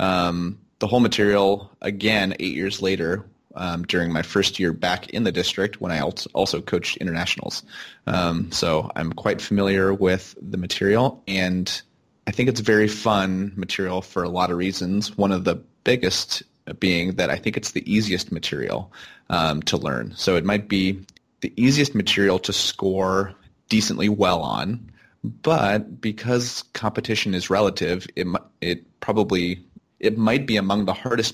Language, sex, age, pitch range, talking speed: English, male, 30-49, 90-105 Hz, 160 wpm